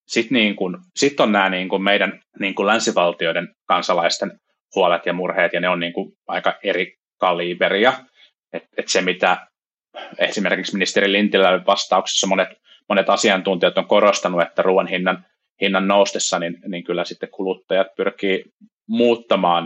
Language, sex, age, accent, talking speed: Finnish, male, 30-49, native, 140 wpm